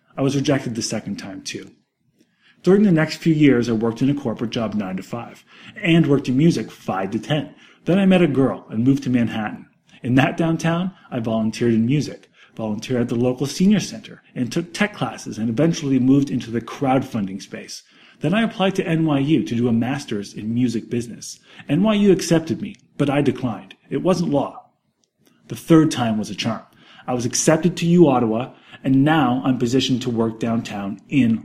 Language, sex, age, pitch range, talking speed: English, male, 30-49, 115-160 Hz, 195 wpm